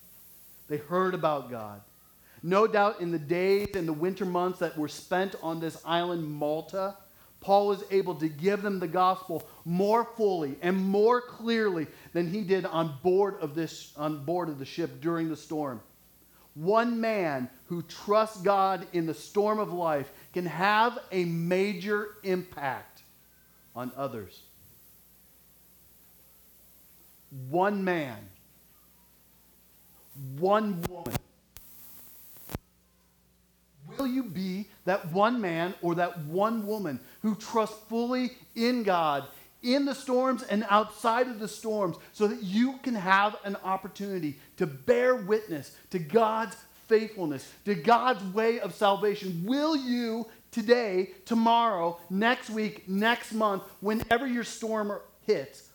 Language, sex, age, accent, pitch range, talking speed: English, male, 40-59, American, 150-215 Hz, 130 wpm